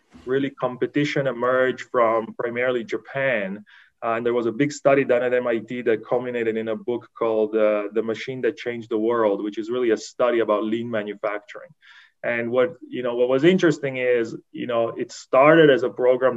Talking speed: 190 wpm